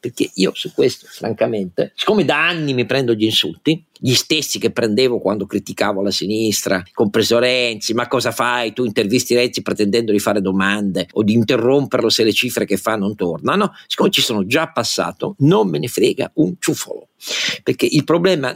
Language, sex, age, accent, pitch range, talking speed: Italian, male, 50-69, native, 120-160 Hz, 185 wpm